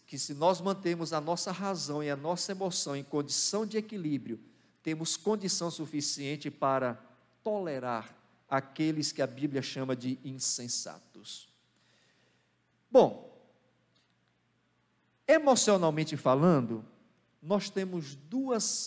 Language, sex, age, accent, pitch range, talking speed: Portuguese, male, 50-69, Brazilian, 135-190 Hz, 105 wpm